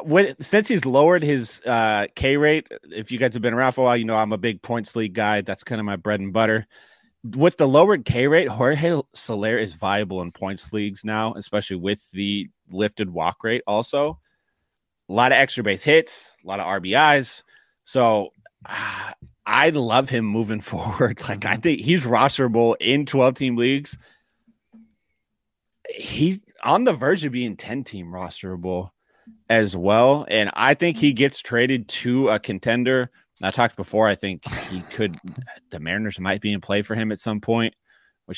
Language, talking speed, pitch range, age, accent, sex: English, 175 wpm, 100-130 Hz, 30-49, American, male